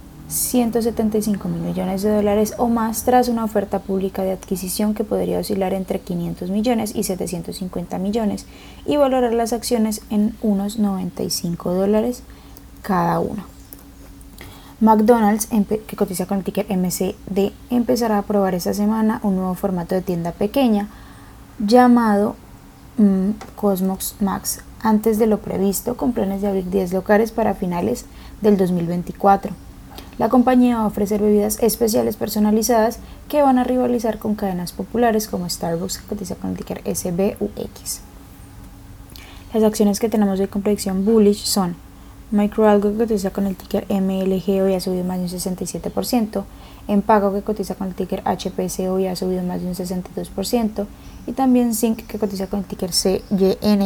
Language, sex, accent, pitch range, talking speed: Spanish, female, Colombian, 190-220 Hz, 150 wpm